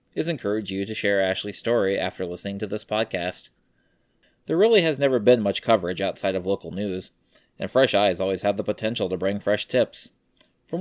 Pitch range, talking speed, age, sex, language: 95-115 Hz, 195 wpm, 20-39, male, English